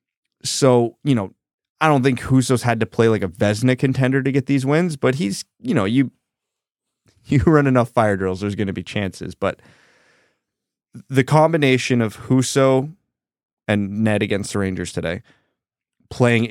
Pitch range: 105-130 Hz